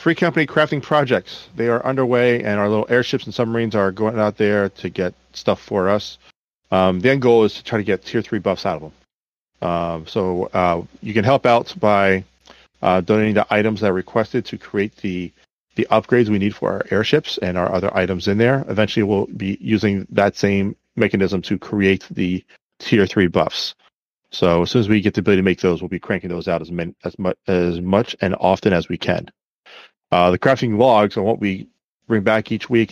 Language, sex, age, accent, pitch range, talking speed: English, male, 40-59, American, 90-110 Hz, 215 wpm